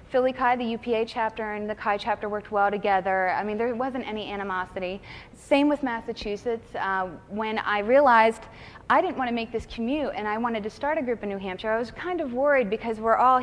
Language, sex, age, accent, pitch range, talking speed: English, female, 20-39, American, 200-260 Hz, 225 wpm